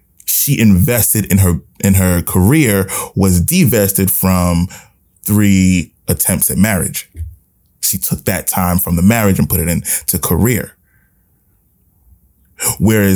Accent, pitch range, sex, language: American, 90-100 Hz, male, English